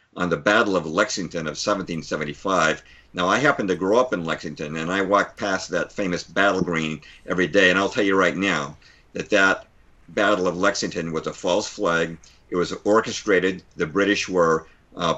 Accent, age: American, 50-69